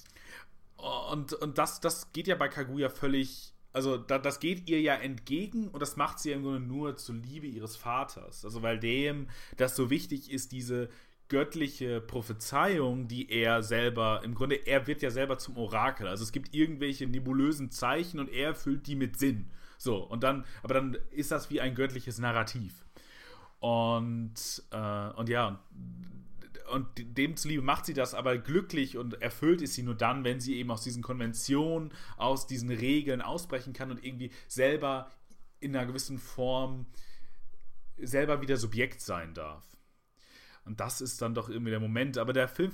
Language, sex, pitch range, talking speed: German, male, 120-140 Hz, 175 wpm